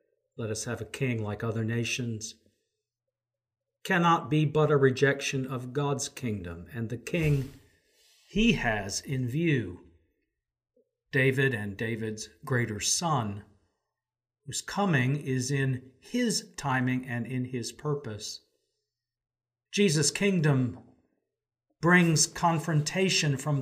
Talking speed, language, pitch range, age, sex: 110 wpm, English, 120-155 Hz, 50-69, male